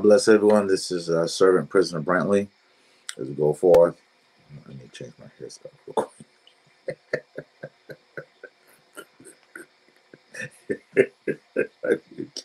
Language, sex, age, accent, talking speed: English, male, 30-49, American, 95 wpm